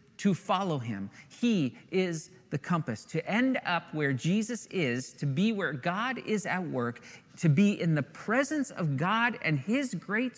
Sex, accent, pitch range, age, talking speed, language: male, American, 130-180 Hz, 40-59, 175 wpm, English